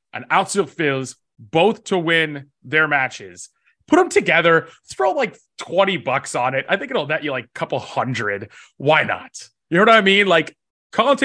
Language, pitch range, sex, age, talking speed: English, 145-195 Hz, male, 20-39, 185 wpm